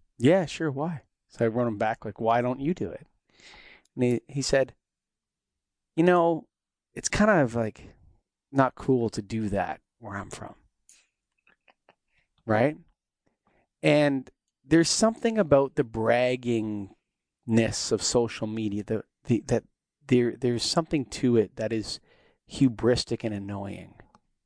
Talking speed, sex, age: 135 wpm, male, 30-49